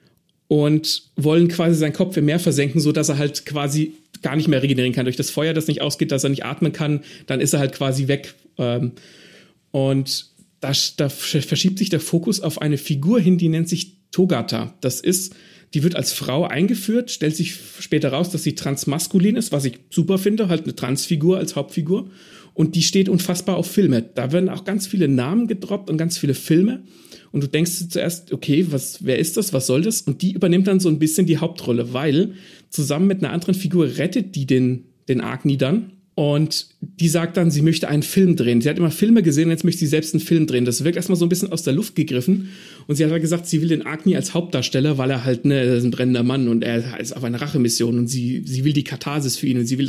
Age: 40-59